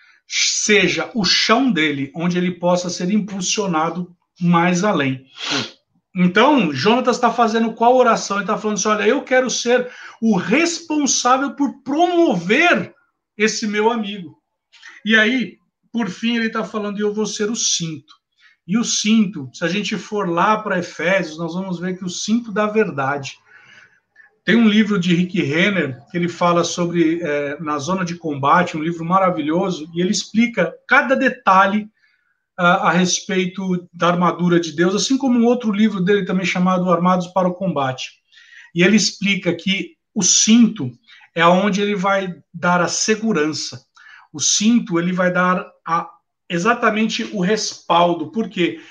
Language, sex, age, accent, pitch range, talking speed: Portuguese, male, 60-79, Brazilian, 175-220 Hz, 155 wpm